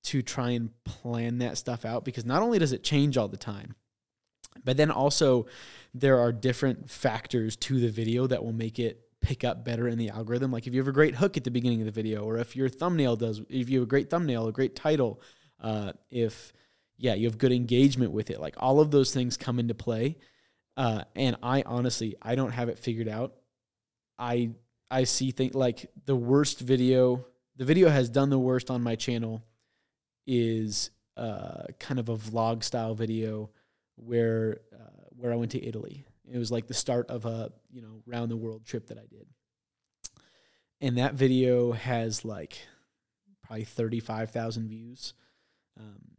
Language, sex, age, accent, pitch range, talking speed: English, male, 20-39, American, 115-130 Hz, 195 wpm